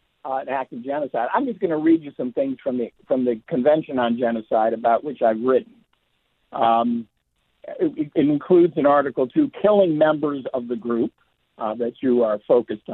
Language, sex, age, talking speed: English, male, 60-79, 190 wpm